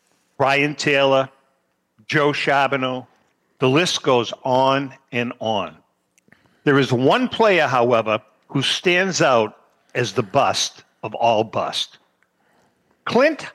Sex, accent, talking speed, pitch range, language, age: male, American, 110 wpm, 130-180 Hz, English, 50-69